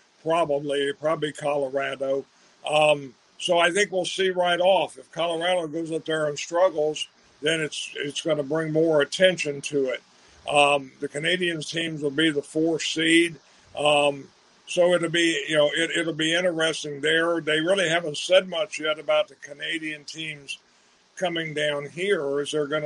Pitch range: 145-170 Hz